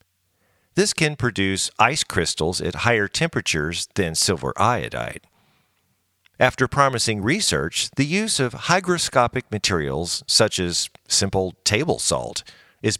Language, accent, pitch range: English, American, 90-130 Hz